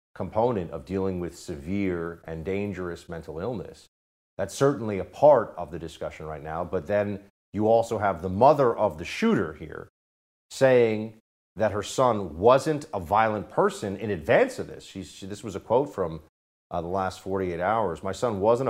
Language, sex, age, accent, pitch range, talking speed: English, male, 40-59, American, 80-105 Hz, 175 wpm